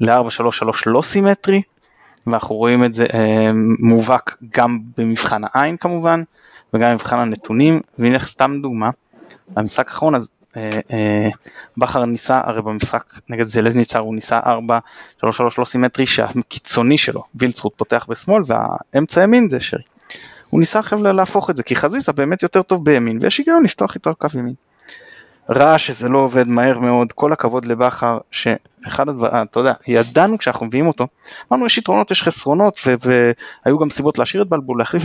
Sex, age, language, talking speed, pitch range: male, 20-39, Hebrew, 160 wpm, 115-155 Hz